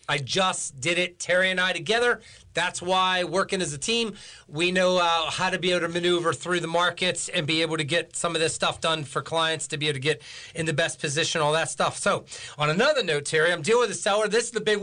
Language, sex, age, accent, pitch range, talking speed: English, male, 40-59, American, 165-205 Hz, 260 wpm